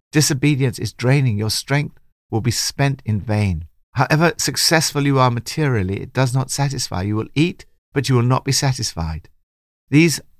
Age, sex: 60-79, male